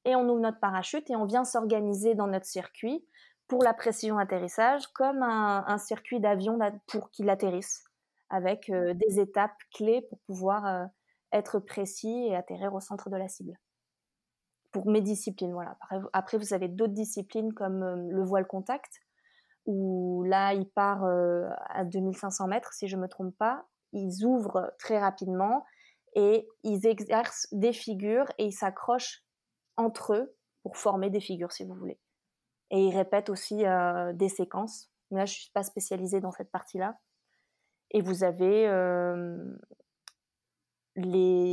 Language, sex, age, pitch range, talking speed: French, female, 20-39, 190-220 Hz, 160 wpm